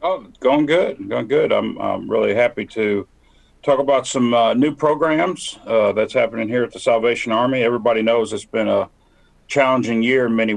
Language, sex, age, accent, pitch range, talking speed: English, male, 40-59, American, 100-120 Hz, 185 wpm